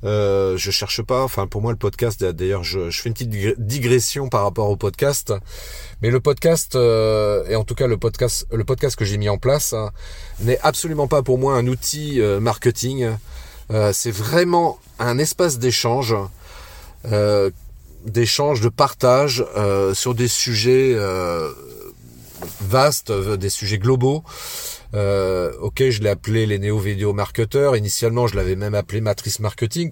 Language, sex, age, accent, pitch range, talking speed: French, male, 40-59, French, 100-120 Hz, 160 wpm